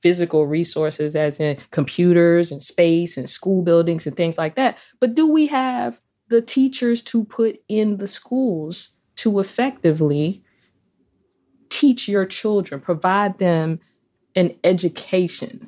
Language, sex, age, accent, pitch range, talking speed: English, female, 20-39, American, 160-215 Hz, 130 wpm